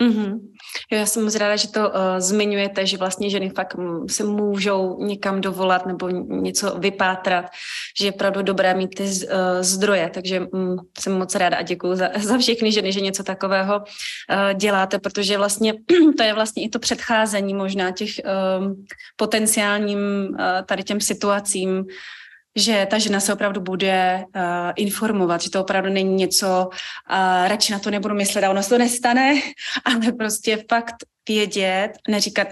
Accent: native